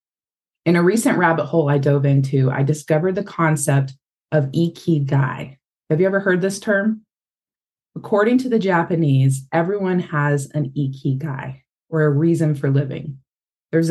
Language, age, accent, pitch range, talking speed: English, 20-39, American, 140-170 Hz, 145 wpm